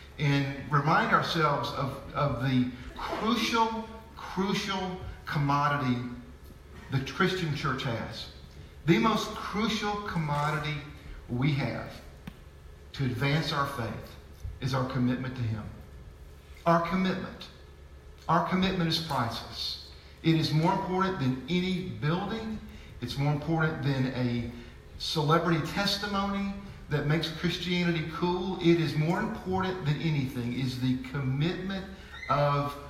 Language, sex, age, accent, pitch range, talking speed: English, male, 50-69, American, 125-180 Hz, 115 wpm